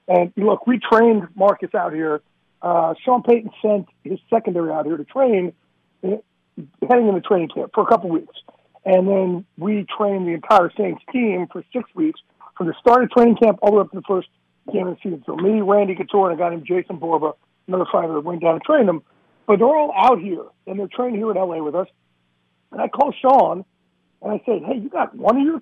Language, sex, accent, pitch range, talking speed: English, male, American, 175-240 Hz, 230 wpm